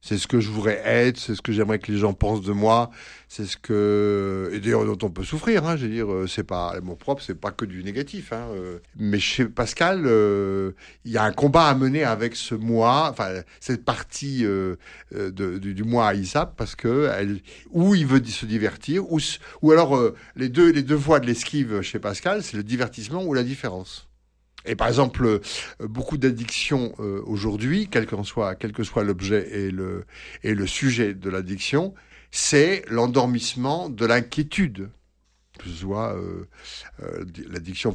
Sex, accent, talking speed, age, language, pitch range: male, French, 180 wpm, 60-79, French, 100-130 Hz